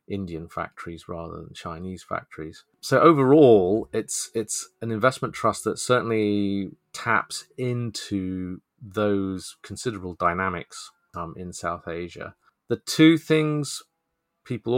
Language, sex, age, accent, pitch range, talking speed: English, male, 30-49, British, 90-110 Hz, 115 wpm